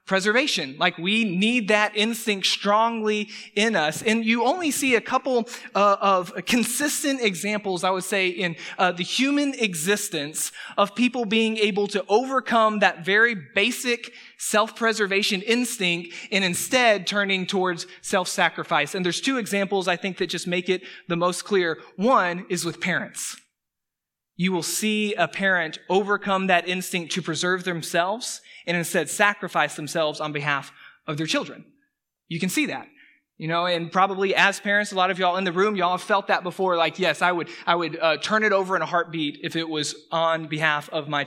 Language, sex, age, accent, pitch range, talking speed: English, male, 20-39, American, 170-210 Hz, 175 wpm